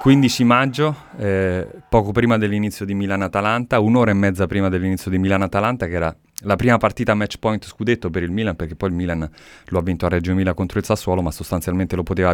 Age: 30-49